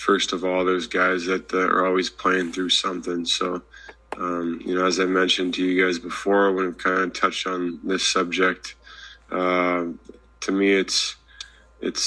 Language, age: English, 20-39